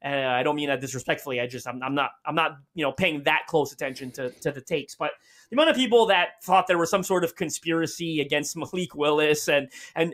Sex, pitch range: male, 155-195 Hz